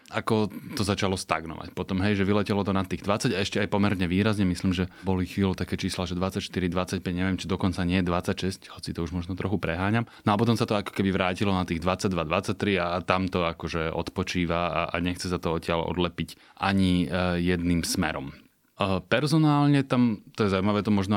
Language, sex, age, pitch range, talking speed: Slovak, male, 30-49, 90-105 Hz, 200 wpm